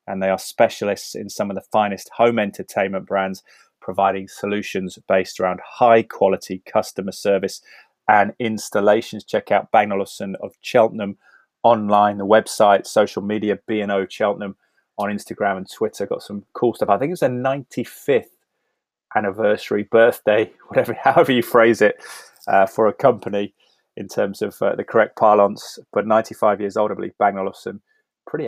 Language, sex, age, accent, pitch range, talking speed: English, male, 20-39, British, 95-110 Hz, 155 wpm